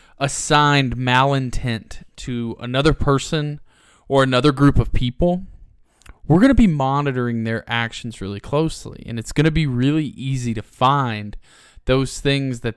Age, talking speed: 20-39, 135 wpm